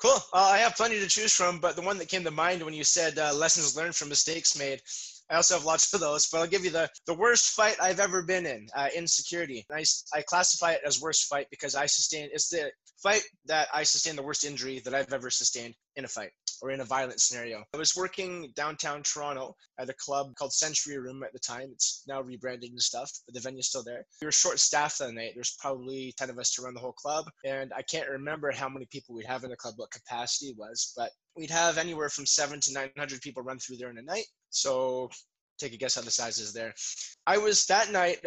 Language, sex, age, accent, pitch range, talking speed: English, male, 20-39, American, 130-165 Hz, 245 wpm